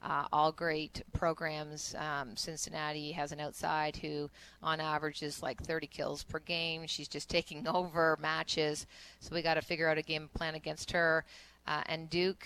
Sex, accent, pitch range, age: female, American, 150-170 Hz, 30-49